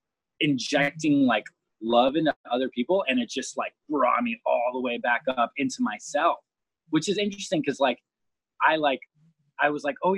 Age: 20-39